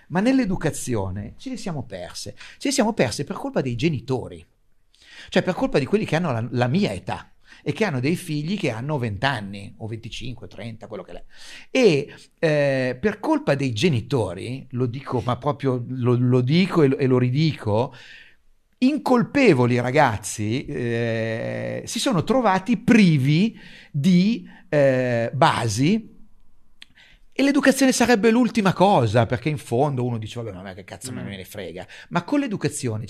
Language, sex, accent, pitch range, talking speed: Italian, male, native, 115-180 Hz, 160 wpm